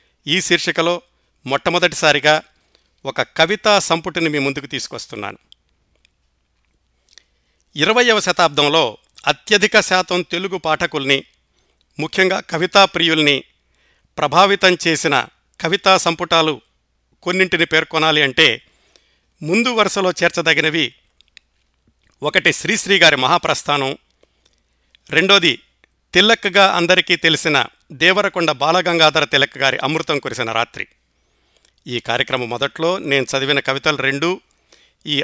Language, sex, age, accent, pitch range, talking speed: Telugu, male, 50-69, native, 125-180 Hz, 85 wpm